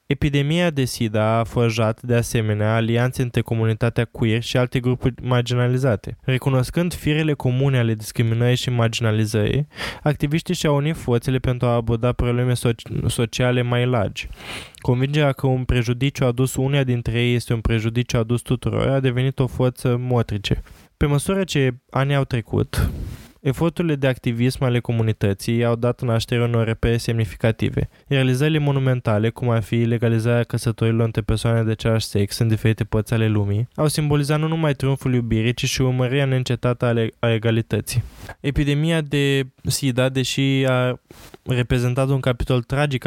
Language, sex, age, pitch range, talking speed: Romanian, male, 20-39, 115-135 Hz, 150 wpm